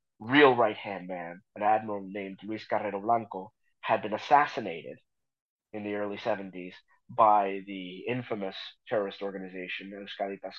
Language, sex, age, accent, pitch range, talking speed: English, male, 30-49, American, 100-135 Hz, 125 wpm